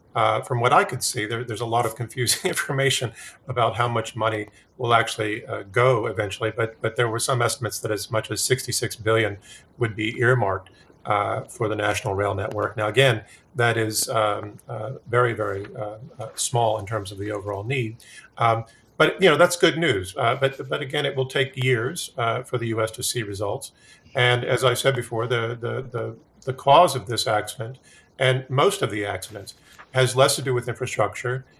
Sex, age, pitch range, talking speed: male, 40-59, 110-125 Hz, 200 wpm